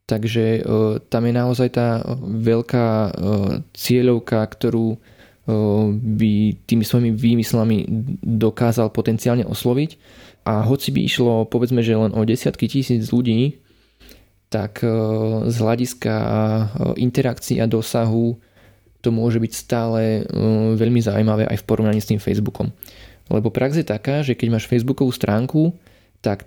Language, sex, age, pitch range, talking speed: Slovak, male, 20-39, 110-125 Hz, 135 wpm